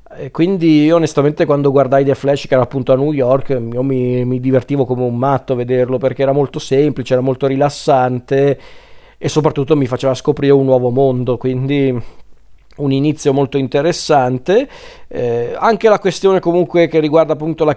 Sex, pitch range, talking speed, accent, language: male, 130-155 Hz, 170 wpm, native, Italian